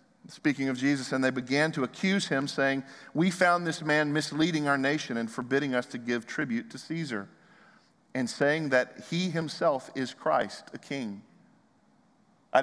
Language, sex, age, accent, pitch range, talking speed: English, male, 40-59, American, 120-155 Hz, 165 wpm